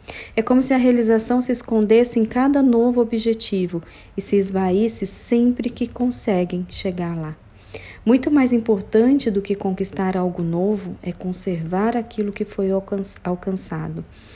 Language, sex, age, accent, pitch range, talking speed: Portuguese, female, 40-59, Brazilian, 185-225 Hz, 140 wpm